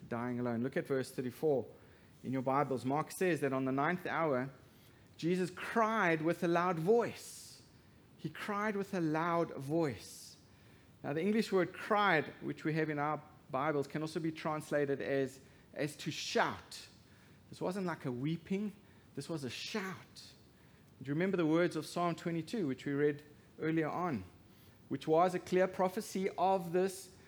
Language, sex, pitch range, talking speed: English, male, 140-190 Hz, 165 wpm